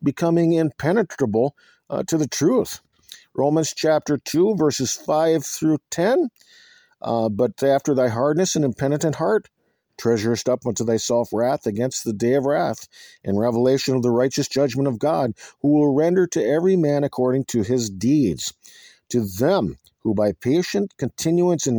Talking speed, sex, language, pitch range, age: 155 wpm, male, English, 120-155 Hz, 50-69